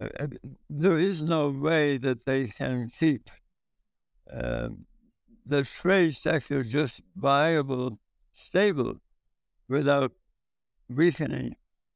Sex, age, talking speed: male, 60-79, 85 wpm